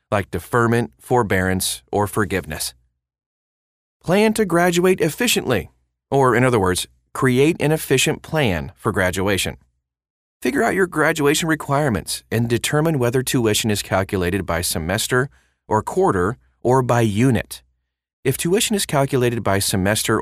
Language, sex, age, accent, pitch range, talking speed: English, male, 30-49, American, 85-130 Hz, 130 wpm